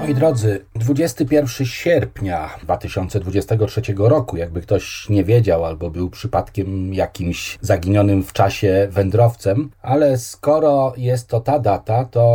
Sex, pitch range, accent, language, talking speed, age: male, 95-120 Hz, native, Polish, 120 wpm, 40-59